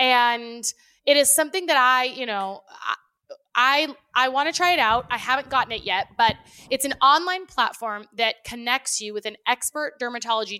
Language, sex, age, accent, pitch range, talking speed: English, female, 20-39, American, 210-270 Hz, 180 wpm